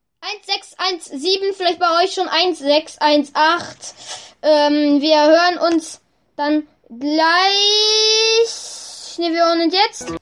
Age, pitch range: 10-29, 290-390 Hz